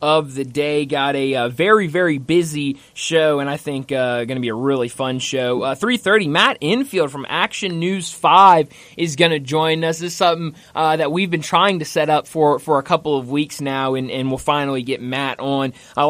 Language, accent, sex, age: English, American, male, 20-39